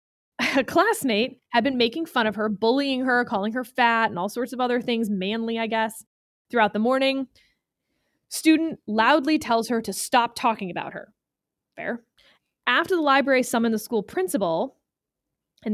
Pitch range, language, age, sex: 210-280 Hz, English, 20-39, female